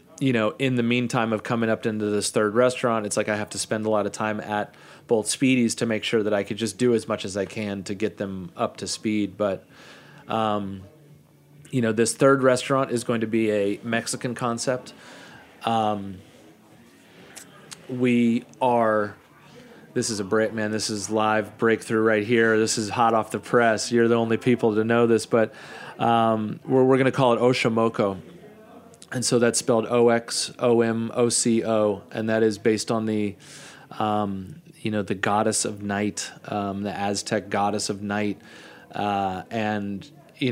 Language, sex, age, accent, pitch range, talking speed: English, male, 30-49, American, 105-125 Hz, 185 wpm